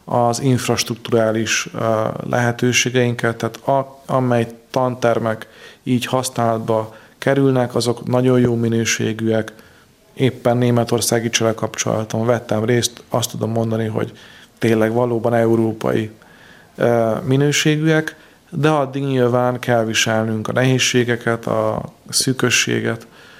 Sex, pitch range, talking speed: male, 115-130 Hz, 90 wpm